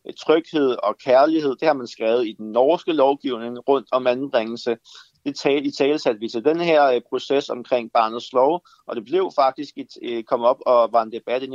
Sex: male